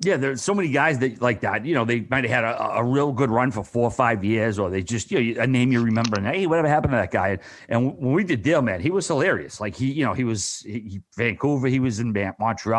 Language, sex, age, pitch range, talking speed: English, male, 30-49, 115-140 Hz, 285 wpm